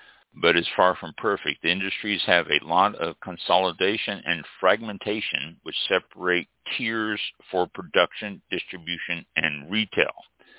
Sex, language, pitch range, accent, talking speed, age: male, English, 85-110 Hz, American, 125 wpm, 60-79